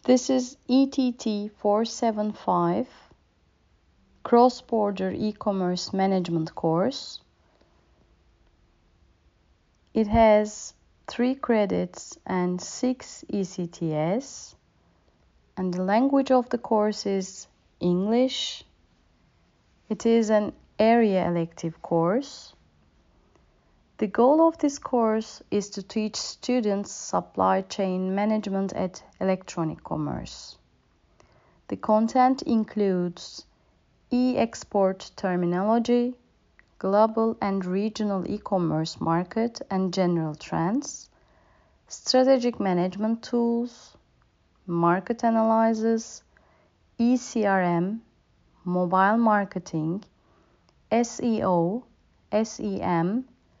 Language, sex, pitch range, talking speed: Turkish, female, 180-230 Hz, 75 wpm